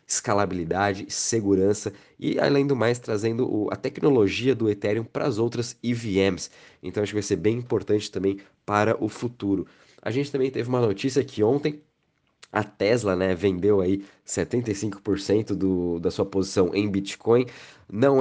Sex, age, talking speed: male, 20-39, 155 wpm